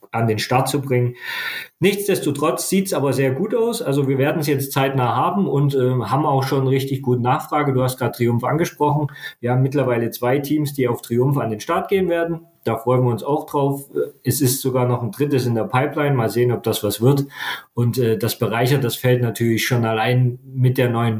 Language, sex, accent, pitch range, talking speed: German, male, German, 115-140 Hz, 220 wpm